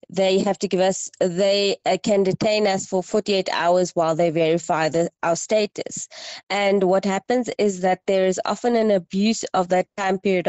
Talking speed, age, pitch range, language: 175 wpm, 20-39, 180-220 Hz, English